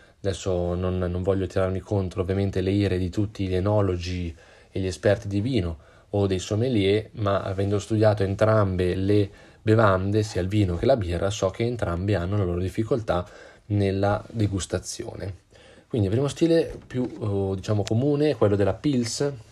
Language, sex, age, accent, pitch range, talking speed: Italian, male, 20-39, native, 95-110 Hz, 165 wpm